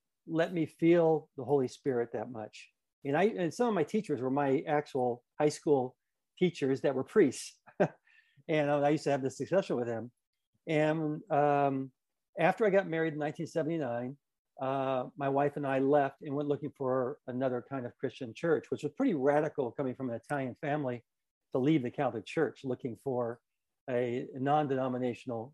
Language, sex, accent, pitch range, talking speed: English, male, American, 130-160 Hz, 175 wpm